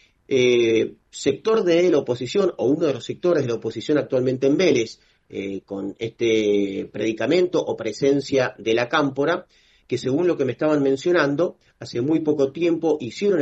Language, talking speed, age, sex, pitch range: Italian, 165 wpm, 40-59, male, 115-150 Hz